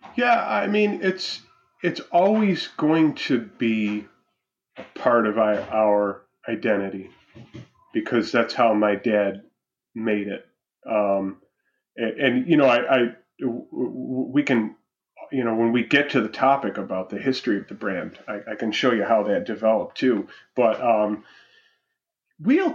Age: 30-49